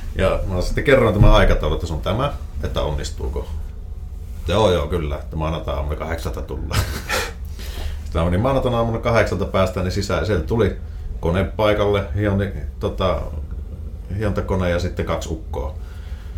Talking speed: 155 wpm